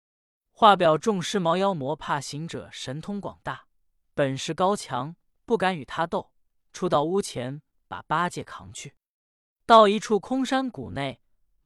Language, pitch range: Chinese, 135-215 Hz